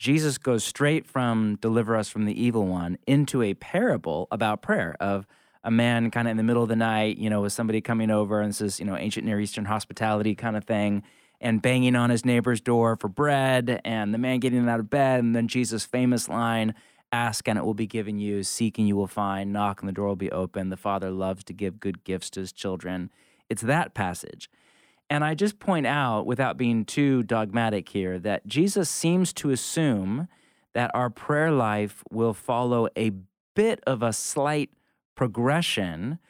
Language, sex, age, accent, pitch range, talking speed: English, male, 20-39, American, 105-125 Hz, 200 wpm